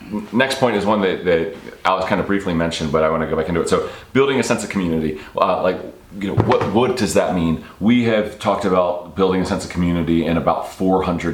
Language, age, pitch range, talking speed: English, 30-49, 80-100 Hz, 245 wpm